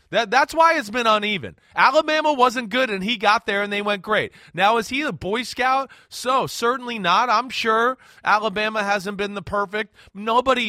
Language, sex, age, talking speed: English, male, 30-49, 190 wpm